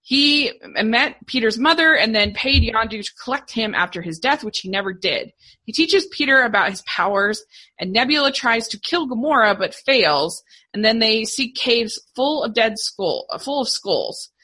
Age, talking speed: 20-39, 185 wpm